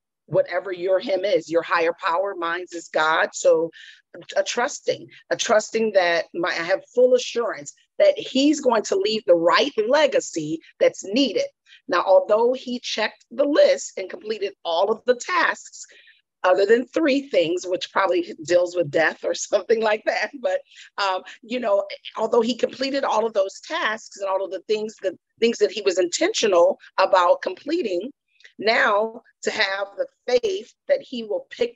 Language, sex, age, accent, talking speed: English, female, 40-59, American, 170 wpm